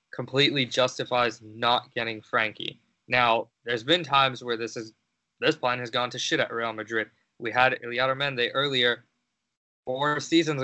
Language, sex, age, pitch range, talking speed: English, male, 20-39, 115-145 Hz, 160 wpm